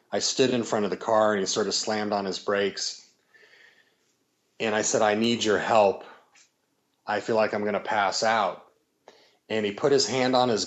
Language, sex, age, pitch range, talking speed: English, male, 30-49, 100-110 Hz, 210 wpm